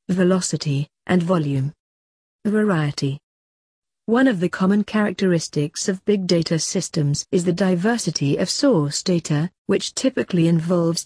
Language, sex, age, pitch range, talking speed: English, female, 40-59, 155-195 Hz, 120 wpm